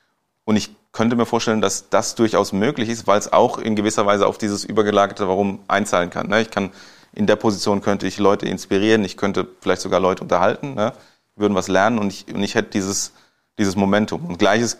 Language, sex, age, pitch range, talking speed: German, male, 30-49, 95-110 Hz, 205 wpm